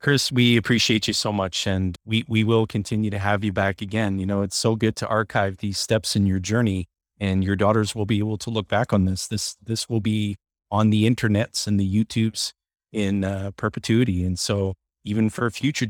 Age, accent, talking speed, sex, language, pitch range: 30-49, American, 215 wpm, male, English, 95-110 Hz